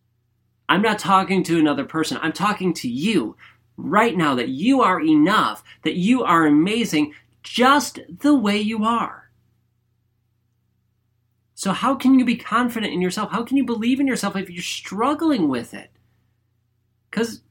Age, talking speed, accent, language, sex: 30-49, 155 wpm, American, English, male